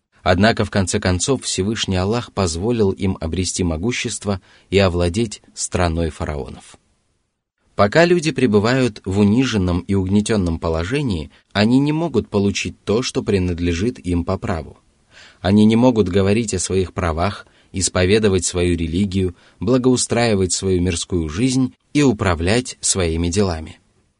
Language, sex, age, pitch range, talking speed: Russian, male, 30-49, 90-120 Hz, 125 wpm